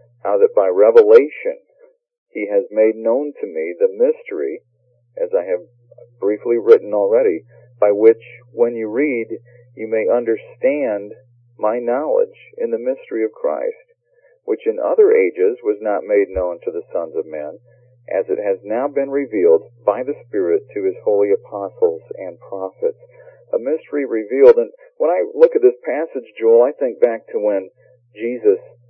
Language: English